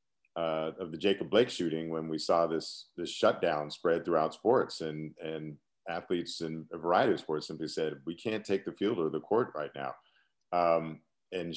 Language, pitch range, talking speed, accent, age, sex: English, 85-105 Hz, 190 wpm, American, 40-59, male